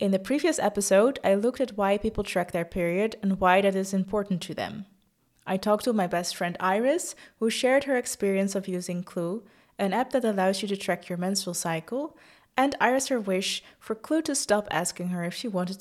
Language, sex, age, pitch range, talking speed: English, female, 20-39, 190-235 Hz, 215 wpm